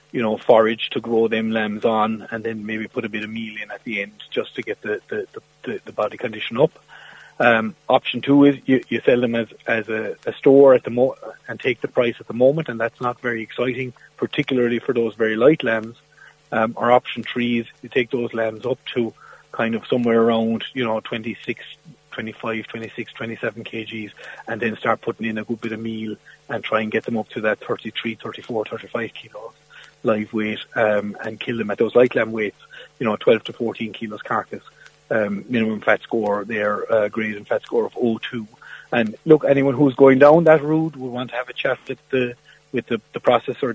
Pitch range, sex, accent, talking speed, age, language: 110-125 Hz, male, Irish, 215 wpm, 30-49, English